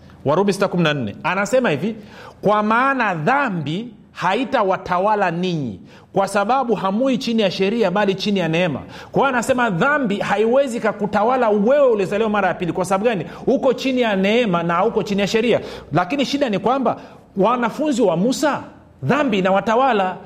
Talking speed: 155 wpm